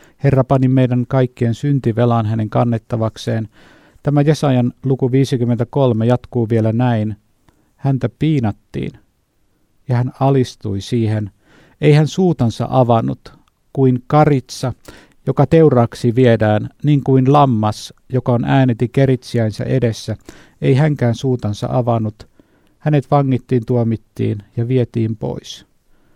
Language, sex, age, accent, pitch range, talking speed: Finnish, male, 50-69, native, 115-135 Hz, 110 wpm